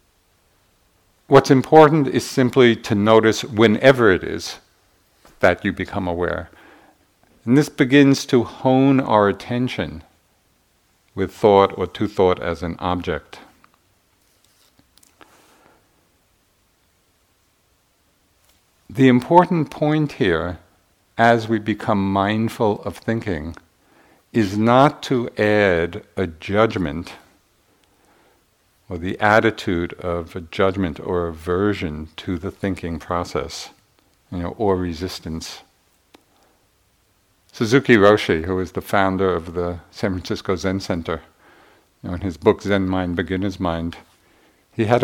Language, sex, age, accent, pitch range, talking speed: English, male, 50-69, American, 90-110 Hz, 110 wpm